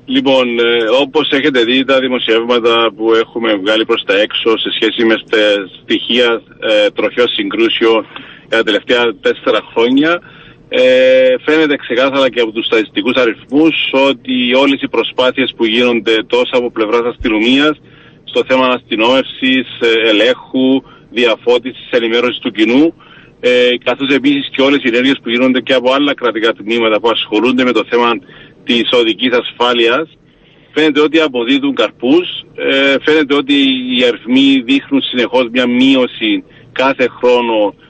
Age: 40-59